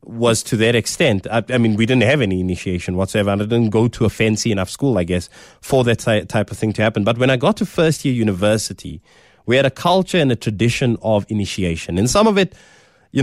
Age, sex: 20-39, male